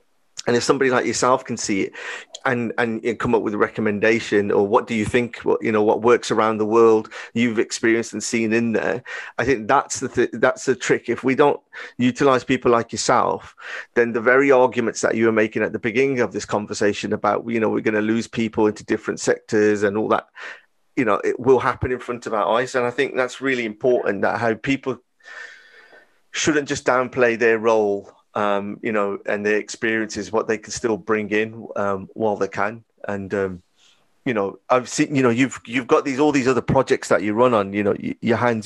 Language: English